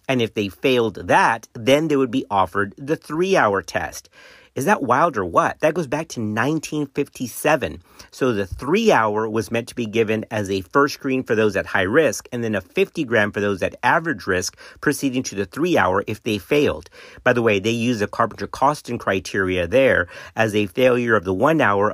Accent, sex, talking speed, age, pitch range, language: American, male, 200 wpm, 50-69, 100-135 Hz, English